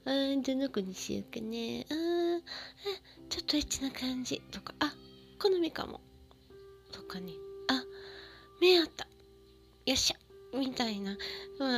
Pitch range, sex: 180-260 Hz, female